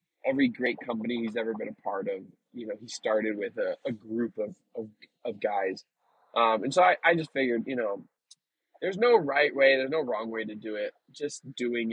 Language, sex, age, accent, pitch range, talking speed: English, male, 20-39, American, 125-160 Hz, 215 wpm